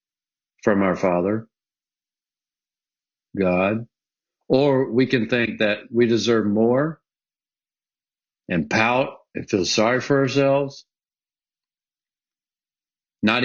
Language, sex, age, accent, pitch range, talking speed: English, male, 50-69, American, 100-125 Hz, 90 wpm